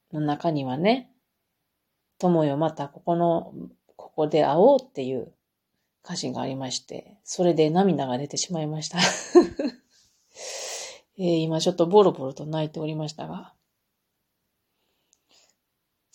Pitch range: 145-190 Hz